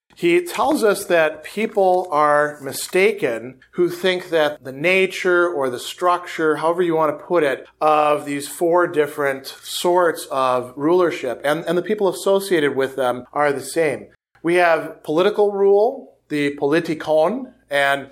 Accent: American